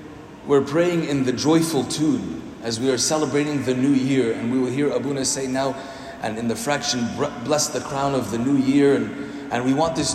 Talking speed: 215 wpm